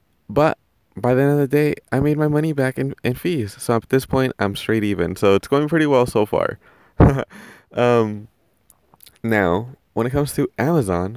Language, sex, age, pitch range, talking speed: English, male, 20-39, 95-120 Hz, 195 wpm